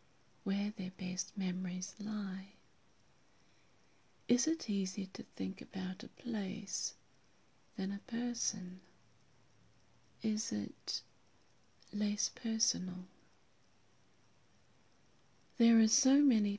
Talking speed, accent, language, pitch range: 85 wpm, British, English, 180-210 Hz